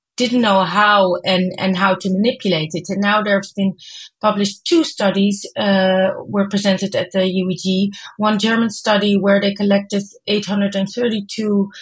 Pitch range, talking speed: 190-215 Hz, 150 wpm